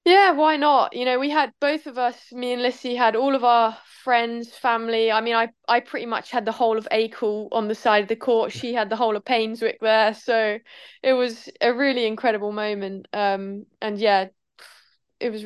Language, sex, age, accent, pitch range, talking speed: English, female, 20-39, British, 200-230 Hz, 215 wpm